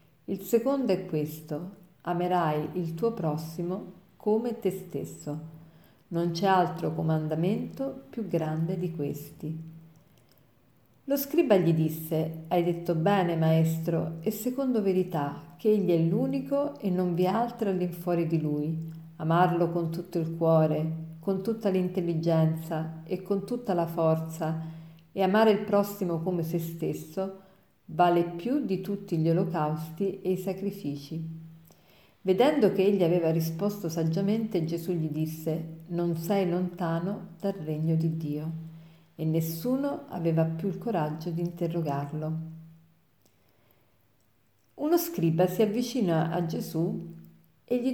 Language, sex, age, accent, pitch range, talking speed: Italian, female, 40-59, native, 160-190 Hz, 130 wpm